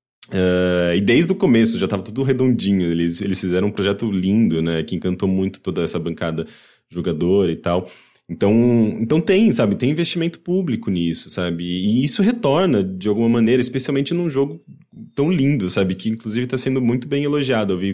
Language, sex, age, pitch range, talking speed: English, male, 20-39, 90-125 Hz, 185 wpm